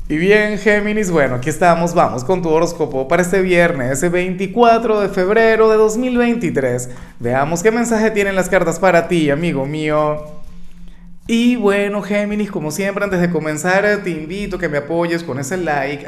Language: Spanish